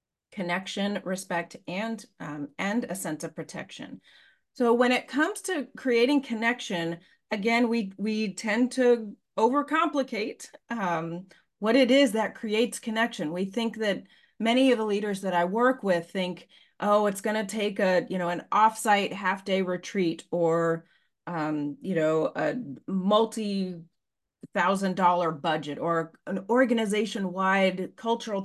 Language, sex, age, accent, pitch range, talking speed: English, female, 30-49, American, 185-240 Hz, 145 wpm